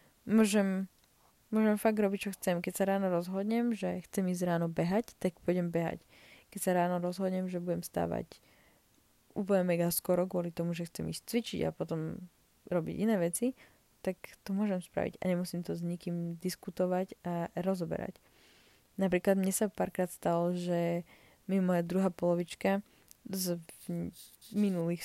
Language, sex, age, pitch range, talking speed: Slovak, female, 20-39, 175-210 Hz, 155 wpm